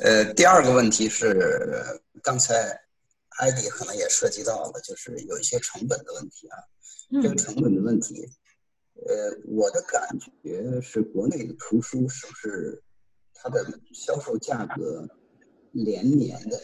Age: 50-69